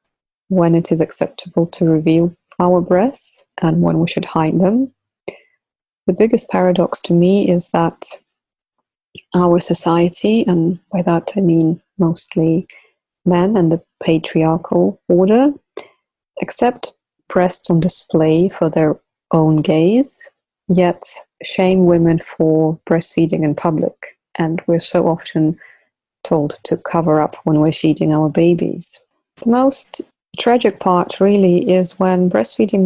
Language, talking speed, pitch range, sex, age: English, 130 wpm, 165-190 Hz, female, 20-39